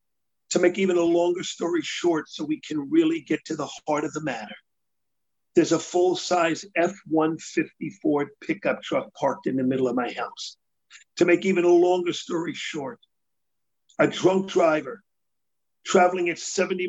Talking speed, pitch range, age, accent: 160 wpm, 165-195 Hz, 50-69, American